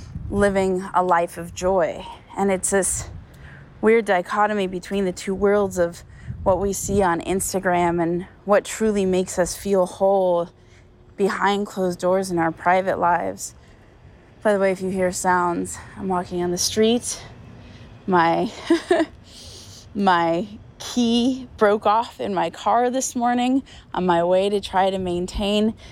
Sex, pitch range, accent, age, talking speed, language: female, 175-220 Hz, American, 20-39, 145 wpm, English